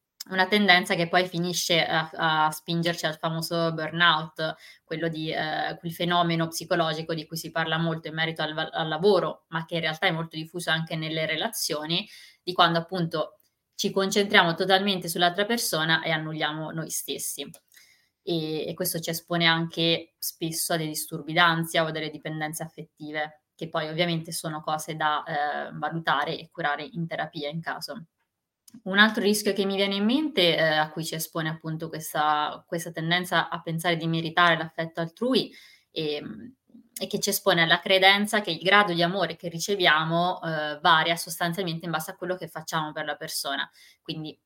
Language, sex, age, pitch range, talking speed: Italian, female, 20-39, 160-180 Hz, 175 wpm